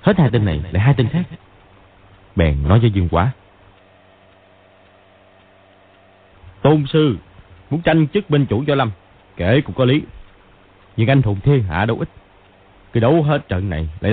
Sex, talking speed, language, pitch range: male, 165 wpm, Vietnamese, 95-130 Hz